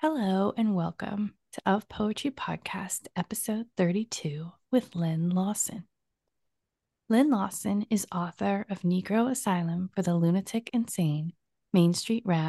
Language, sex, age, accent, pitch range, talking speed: English, female, 30-49, American, 180-215 Hz, 125 wpm